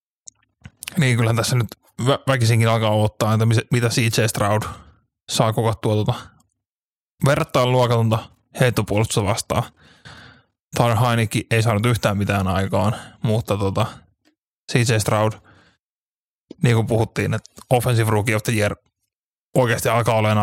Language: Finnish